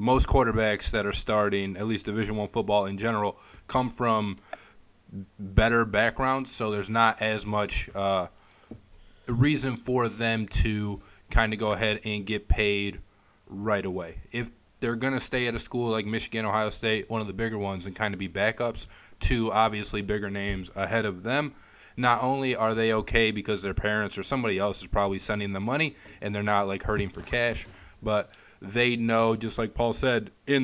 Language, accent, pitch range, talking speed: English, American, 100-115 Hz, 185 wpm